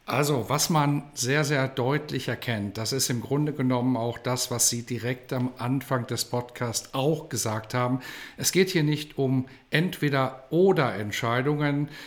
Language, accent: German, German